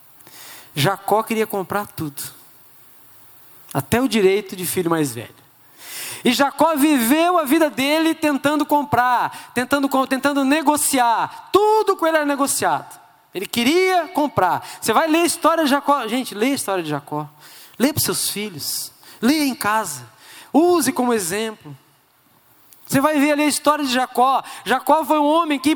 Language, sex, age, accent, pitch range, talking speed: Portuguese, male, 20-39, Brazilian, 195-295 Hz, 155 wpm